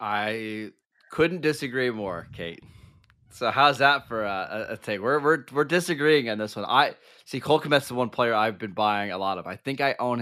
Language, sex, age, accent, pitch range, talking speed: English, male, 20-39, American, 105-135 Hz, 215 wpm